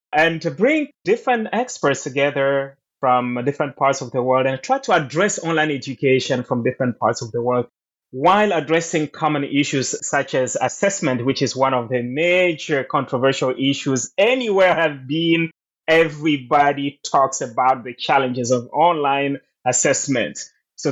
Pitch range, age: 130-170 Hz, 20-39